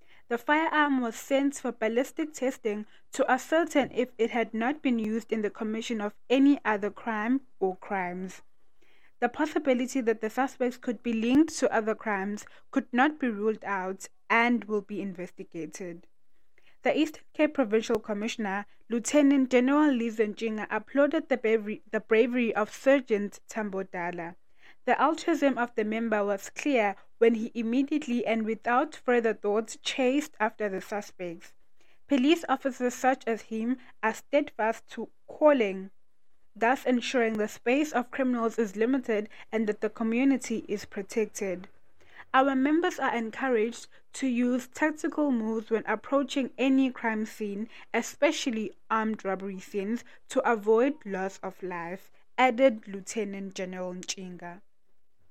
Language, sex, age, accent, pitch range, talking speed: English, female, 20-39, South African, 210-265 Hz, 140 wpm